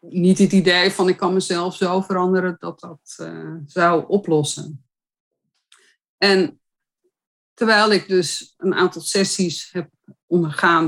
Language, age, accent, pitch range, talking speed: Dutch, 50-69, Dutch, 155-185 Hz, 125 wpm